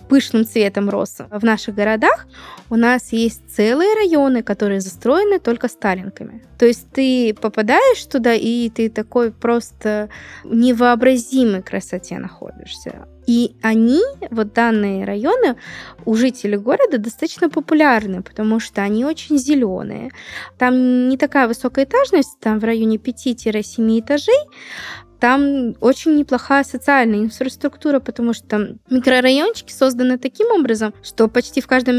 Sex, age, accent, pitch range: female, 20-39, native, 220-275 Hz